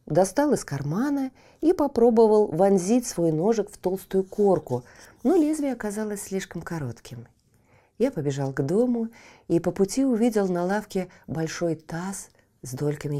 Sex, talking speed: female, 135 wpm